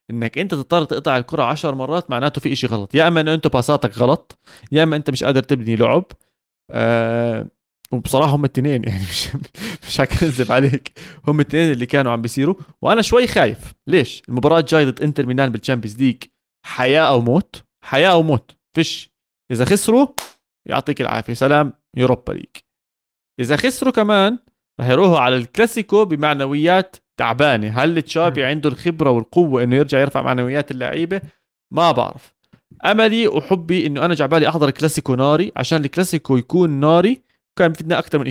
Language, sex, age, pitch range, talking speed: Arabic, male, 20-39, 125-165 Hz, 160 wpm